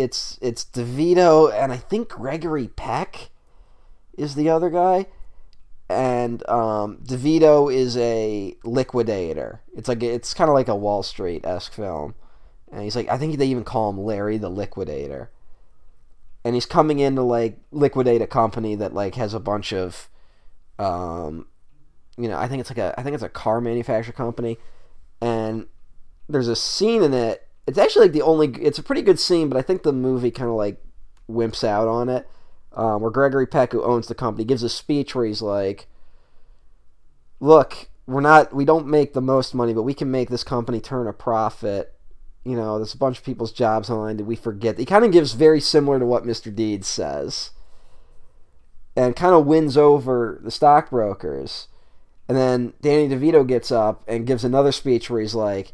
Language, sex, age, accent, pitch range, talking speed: English, male, 20-39, American, 110-140 Hz, 185 wpm